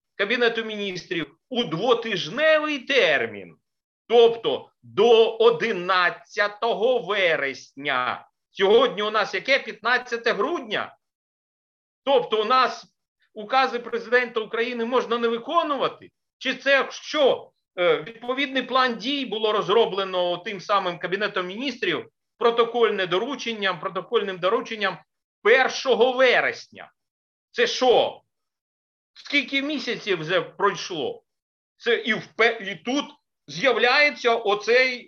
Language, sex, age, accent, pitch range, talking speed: Ukrainian, male, 50-69, native, 205-270 Hz, 90 wpm